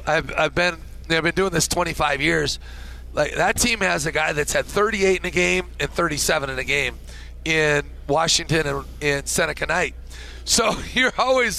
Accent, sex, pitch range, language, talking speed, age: American, male, 140-175 Hz, English, 180 wpm, 40-59